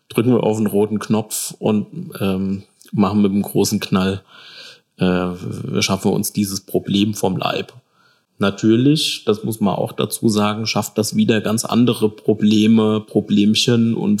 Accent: German